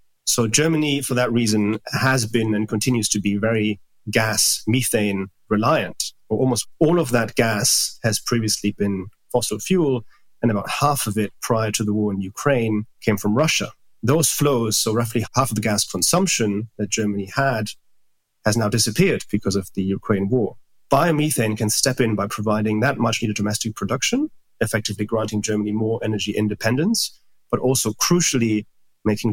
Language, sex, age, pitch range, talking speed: English, male, 30-49, 105-125 Hz, 160 wpm